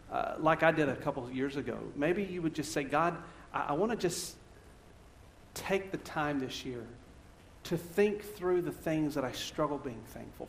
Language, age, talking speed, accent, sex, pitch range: English, 50-69, 195 wpm, American, male, 100-155 Hz